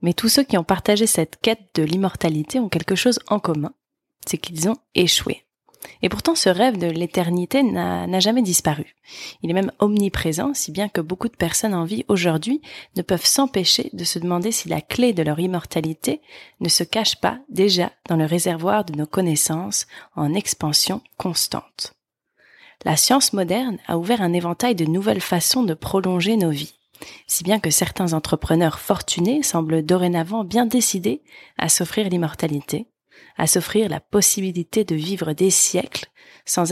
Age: 20-39